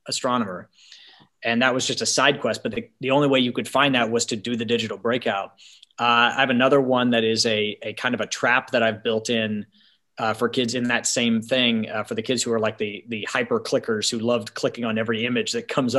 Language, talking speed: English, 250 wpm